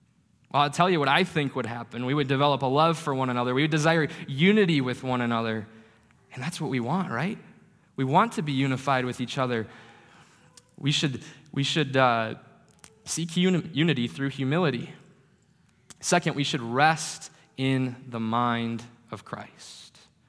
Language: English